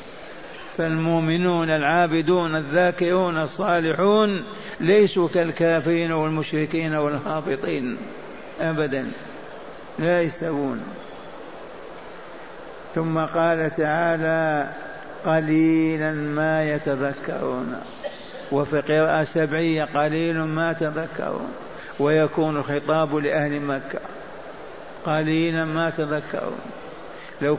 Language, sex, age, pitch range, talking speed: Arabic, male, 60-79, 155-195 Hz, 65 wpm